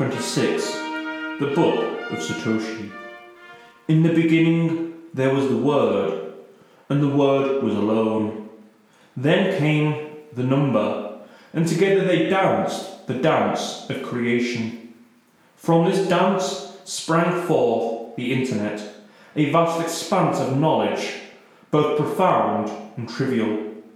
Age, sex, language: 30-49, male, English